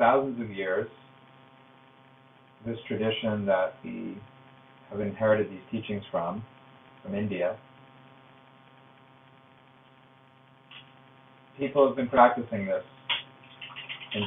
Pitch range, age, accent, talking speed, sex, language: 115-135 Hz, 40-59, American, 85 wpm, male, English